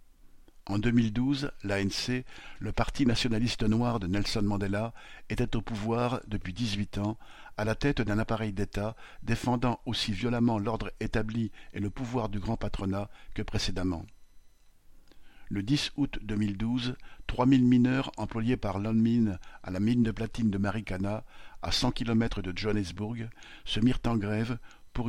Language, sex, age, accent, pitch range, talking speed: French, male, 50-69, French, 100-120 Hz, 145 wpm